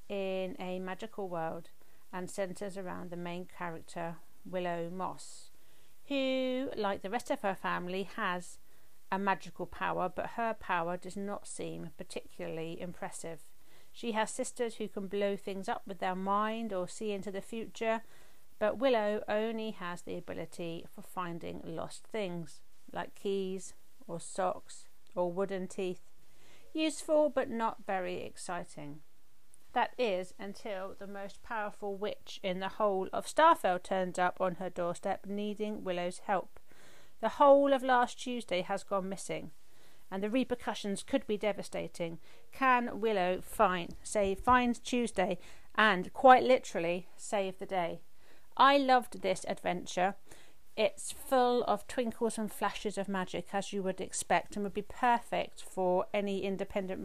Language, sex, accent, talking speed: English, female, British, 145 wpm